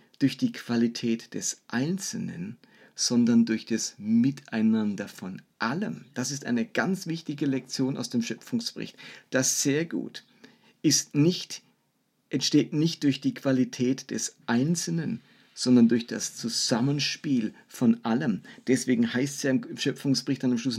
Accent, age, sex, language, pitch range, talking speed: German, 50-69, male, German, 125-165 Hz, 135 wpm